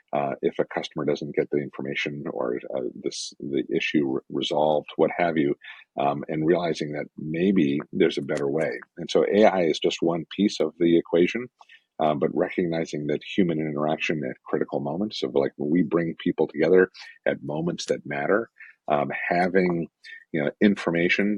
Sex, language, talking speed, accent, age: male, English, 175 wpm, American, 50-69